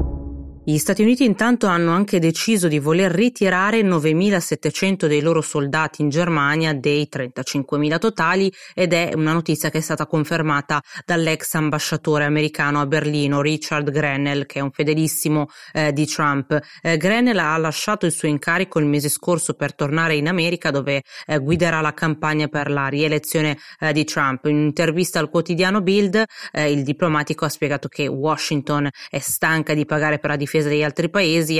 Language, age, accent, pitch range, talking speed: Italian, 30-49, native, 145-165 Hz, 165 wpm